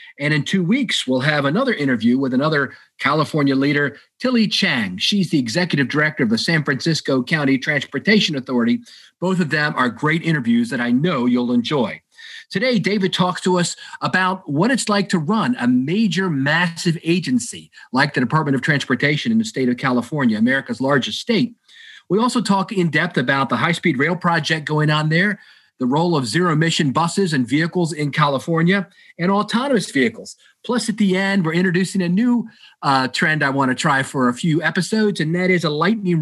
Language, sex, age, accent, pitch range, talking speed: English, male, 40-59, American, 145-210 Hz, 185 wpm